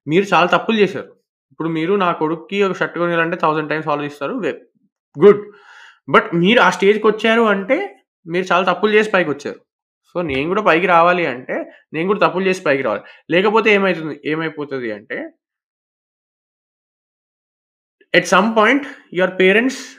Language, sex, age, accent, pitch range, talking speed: Telugu, male, 20-39, native, 165-220 Hz, 145 wpm